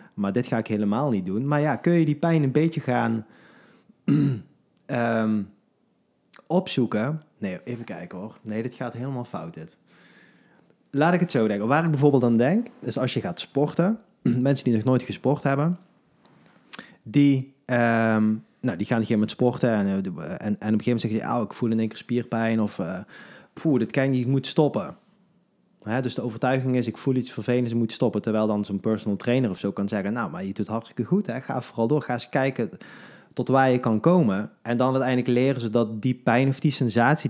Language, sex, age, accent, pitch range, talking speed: Dutch, male, 30-49, Dutch, 110-145 Hz, 215 wpm